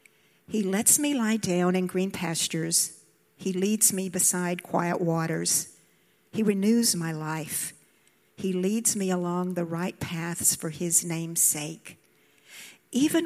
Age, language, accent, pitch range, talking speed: 50-69, English, American, 170-200 Hz, 135 wpm